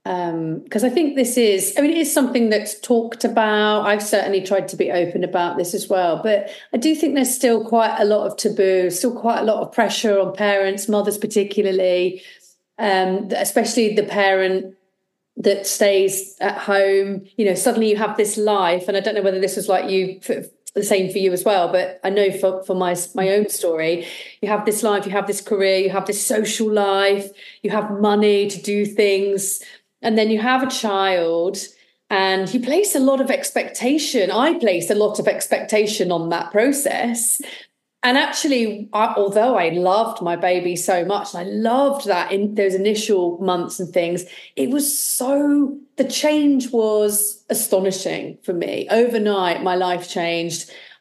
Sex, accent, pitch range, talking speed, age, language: female, British, 190-230 Hz, 185 wpm, 40-59, English